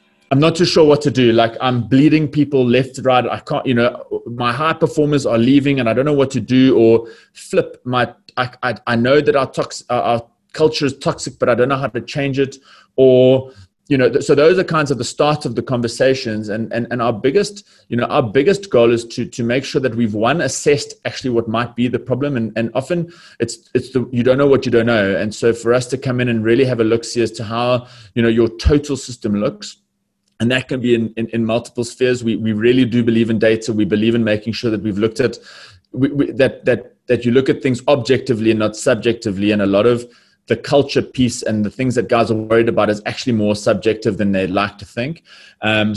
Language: English